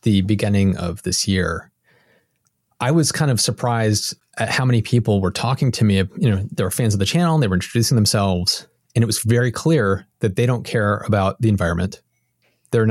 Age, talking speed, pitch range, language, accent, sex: 30-49, 205 wpm, 100-120 Hz, English, American, male